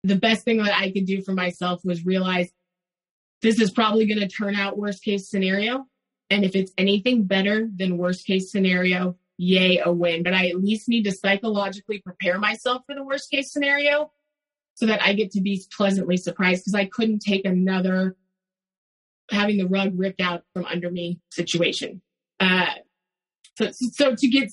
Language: English